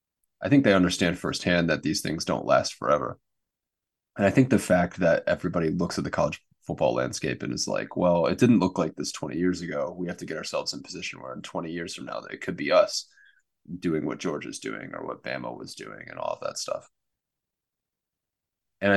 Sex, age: male, 20-39